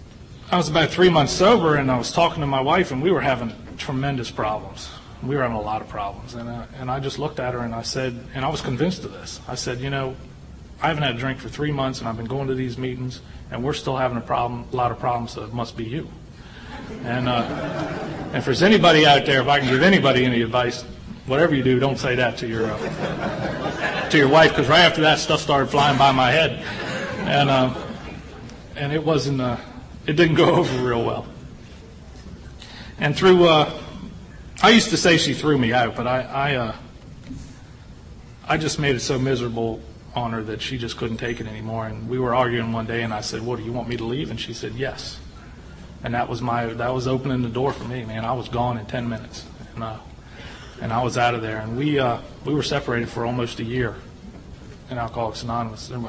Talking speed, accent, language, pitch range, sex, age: 230 wpm, American, English, 120-145 Hz, male, 40-59